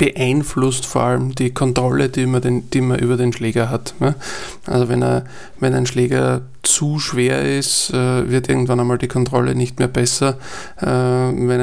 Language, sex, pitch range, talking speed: German, male, 120-130 Hz, 150 wpm